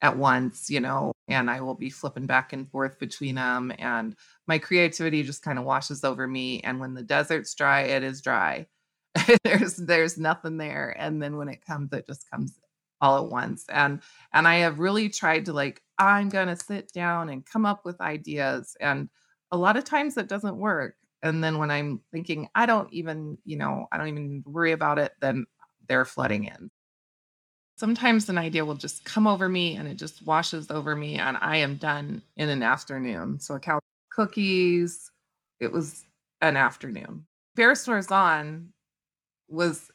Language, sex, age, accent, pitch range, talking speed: English, female, 20-39, American, 140-175 Hz, 190 wpm